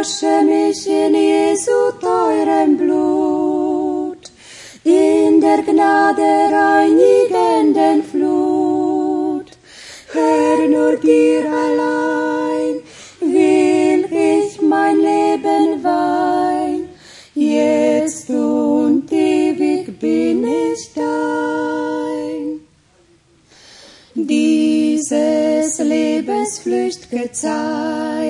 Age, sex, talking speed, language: 30-49, female, 55 wpm, Croatian